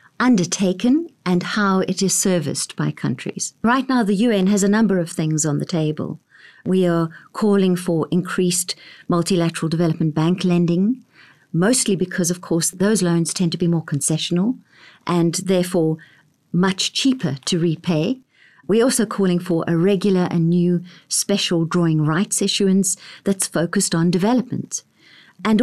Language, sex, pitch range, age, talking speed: English, female, 170-200 Hz, 50-69, 150 wpm